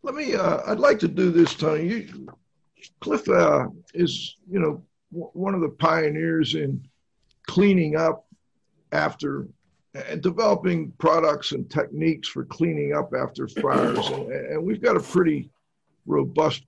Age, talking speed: 50-69, 140 wpm